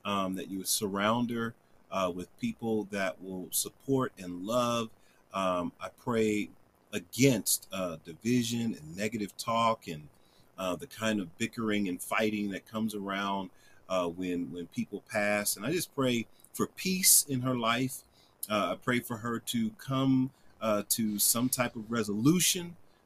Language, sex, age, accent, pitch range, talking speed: English, male, 30-49, American, 105-130 Hz, 160 wpm